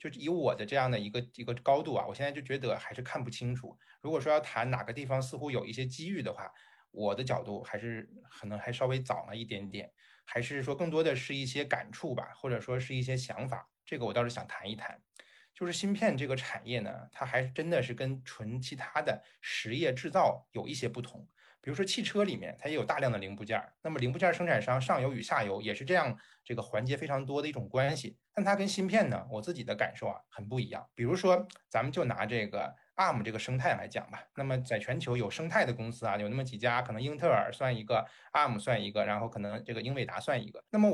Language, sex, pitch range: Chinese, male, 115-165 Hz